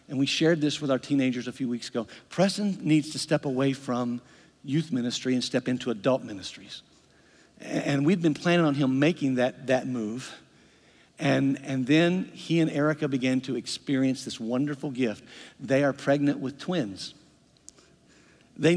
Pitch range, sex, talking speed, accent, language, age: 130-160 Hz, male, 165 wpm, American, English, 50-69